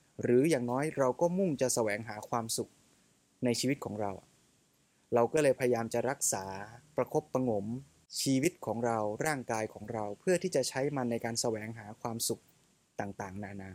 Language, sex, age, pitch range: Thai, male, 20-39, 115-145 Hz